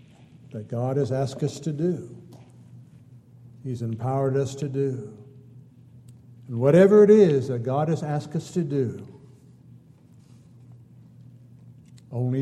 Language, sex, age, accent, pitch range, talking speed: English, male, 60-79, American, 120-145 Hz, 115 wpm